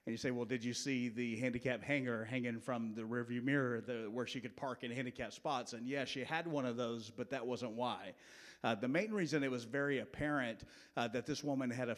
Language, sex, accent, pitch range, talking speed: English, male, American, 125-150 Hz, 240 wpm